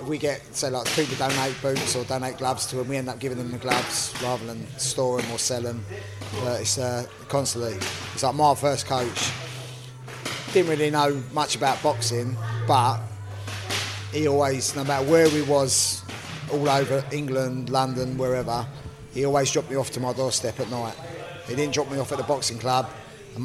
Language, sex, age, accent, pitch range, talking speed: English, male, 20-39, British, 115-140 Hz, 185 wpm